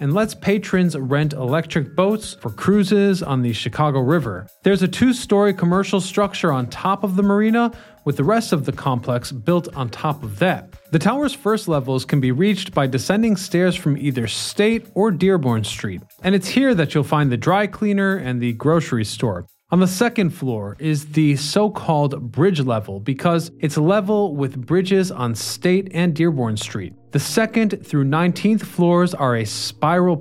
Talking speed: 175 wpm